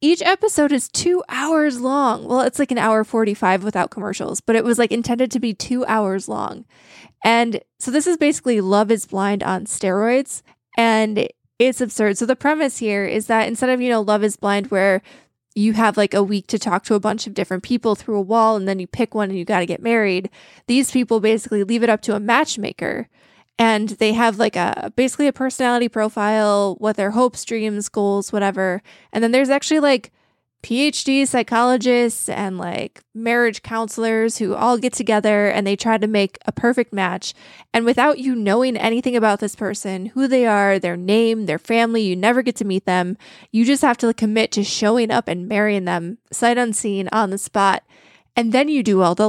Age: 20-39